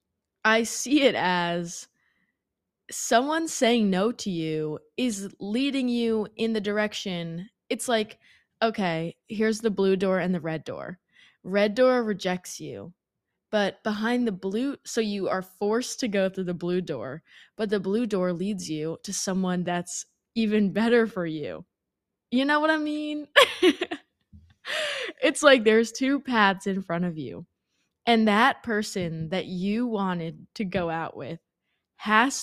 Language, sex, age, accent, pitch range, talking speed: English, female, 20-39, American, 180-235 Hz, 150 wpm